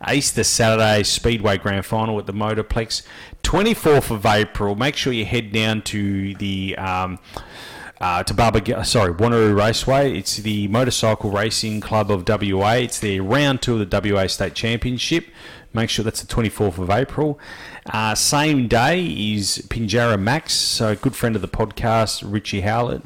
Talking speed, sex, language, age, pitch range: 165 wpm, male, English, 30-49, 100-125 Hz